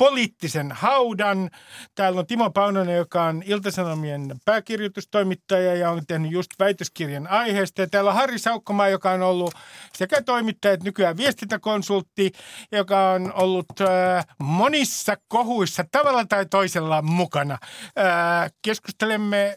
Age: 60-79